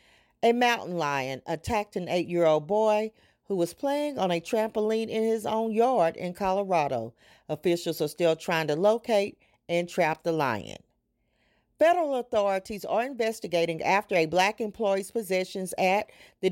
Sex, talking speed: female, 145 wpm